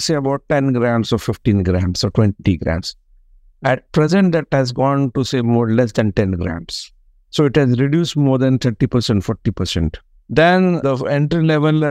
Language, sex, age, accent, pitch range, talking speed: English, male, 50-69, Indian, 120-155 Hz, 170 wpm